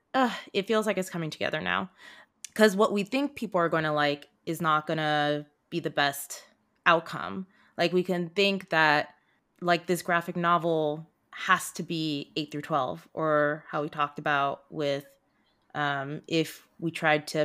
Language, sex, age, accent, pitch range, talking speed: English, female, 20-39, American, 150-185 Hz, 175 wpm